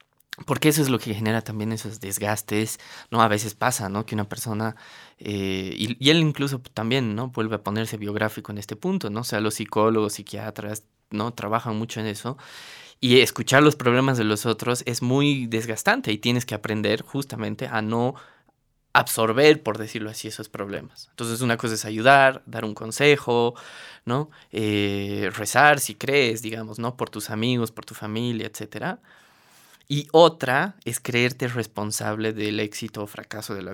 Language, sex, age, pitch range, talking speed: Spanish, male, 20-39, 105-130 Hz, 175 wpm